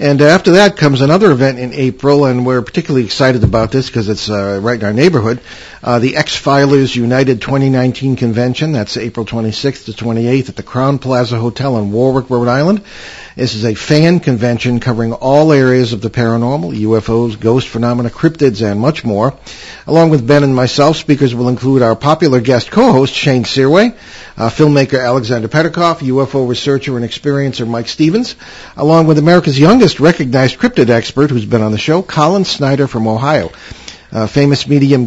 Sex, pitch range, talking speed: male, 120-145 Hz, 175 wpm